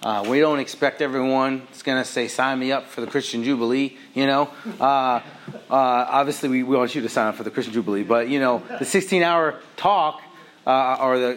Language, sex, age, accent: English, male, 30-49, American